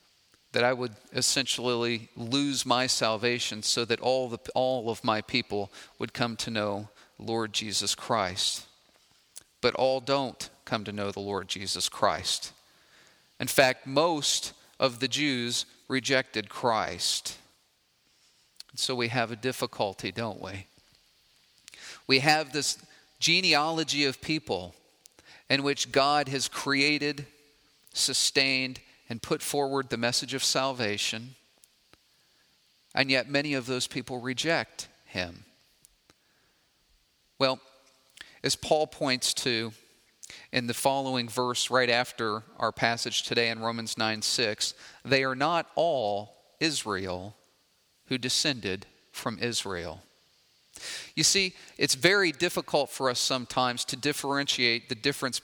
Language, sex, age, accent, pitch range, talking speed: English, male, 40-59, American, 115-140 Hz, 120 wpm